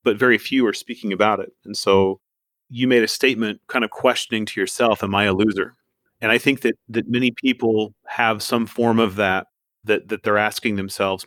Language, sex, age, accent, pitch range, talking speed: English, male, 30-49, American, 95-115 Hz, 210 wpm